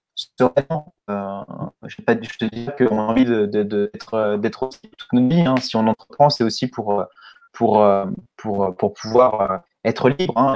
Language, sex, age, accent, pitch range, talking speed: French, male, 30-49, French, 110-145 Hz, 190 wpm